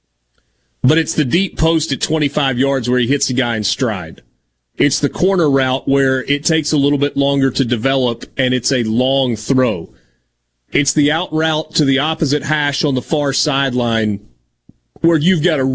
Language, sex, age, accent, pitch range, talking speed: English, male, 30-49, American, 115-150 Hz, 185 wpm